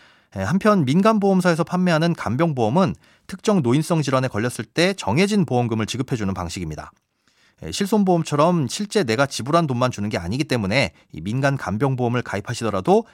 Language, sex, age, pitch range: Korean, male, 30-49, 120-175 Hz